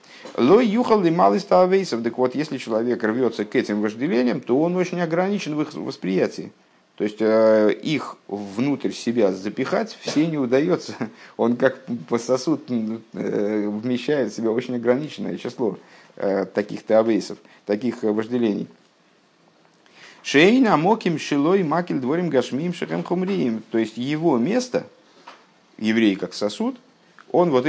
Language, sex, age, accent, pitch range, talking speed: Russian, male, 50-69, native, 115-145 Hz, 120 wpm